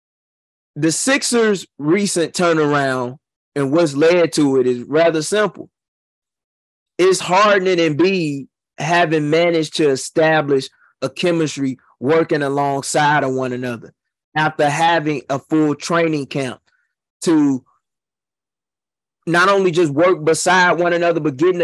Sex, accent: male, American